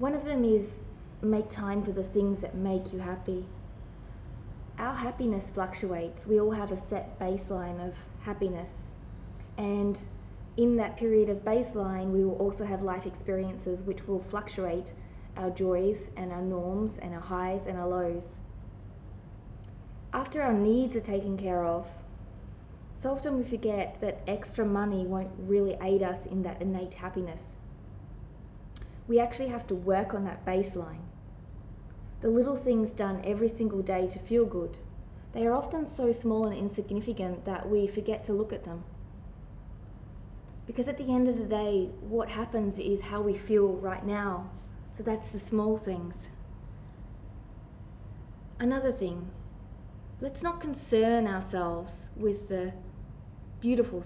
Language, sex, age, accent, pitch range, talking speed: English, female, 20-39, Australian, 135-215 Hz, 150 wpm